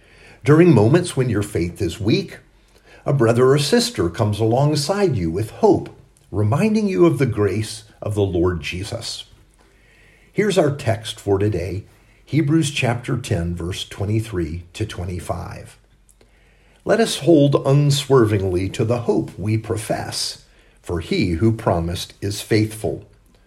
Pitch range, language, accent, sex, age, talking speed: 105-140 Hz, English, American, male, 50-69, 135 wpm